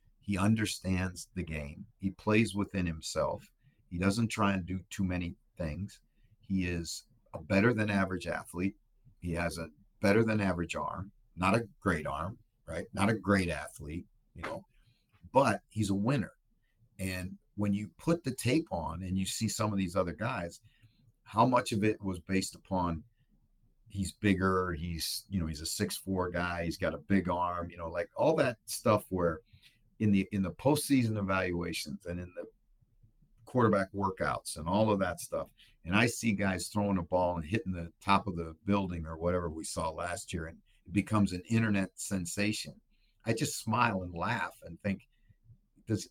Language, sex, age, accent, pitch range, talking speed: English, male, 40-59, American, 90-110 Hz, 180 wpm